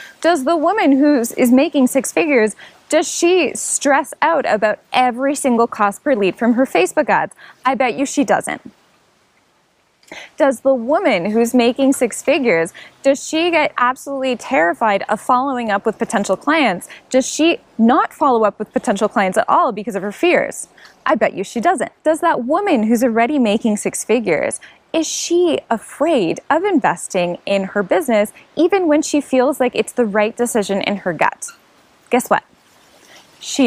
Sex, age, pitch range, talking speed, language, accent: female, 10-29, 205-280 Hz, 170 wpm, English, American